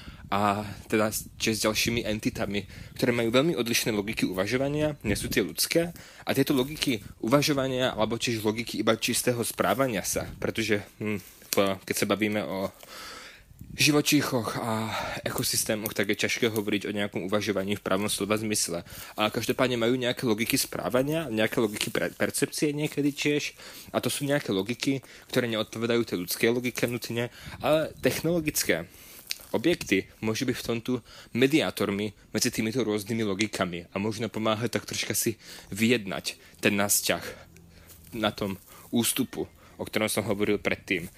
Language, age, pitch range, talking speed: Czech, 20-39, 105-125 Hz, 145 wpm